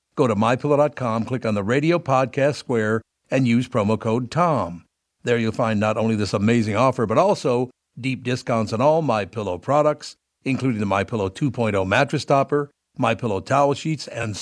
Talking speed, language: 165 wpm, English